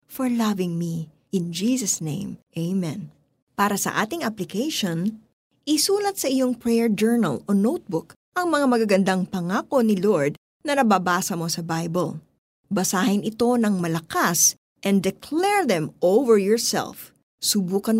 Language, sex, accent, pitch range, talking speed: Filipino, female, native, 180-255 Hz, 130 wpm